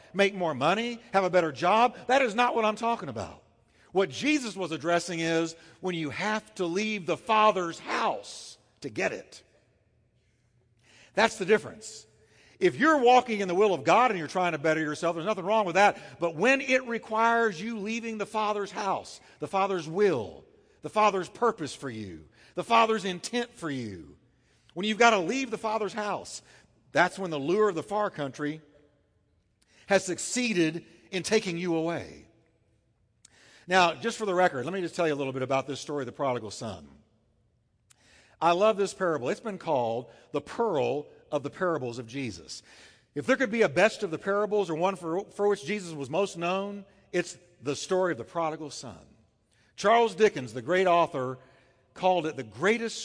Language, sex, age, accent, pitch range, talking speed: English, male, 50-69, American, 135-210 Hz, 185 wpm